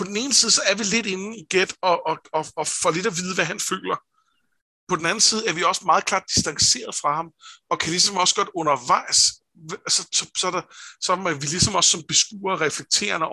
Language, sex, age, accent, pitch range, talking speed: Danish, male, 60-79, native, 145-195 Hz, 235 wpm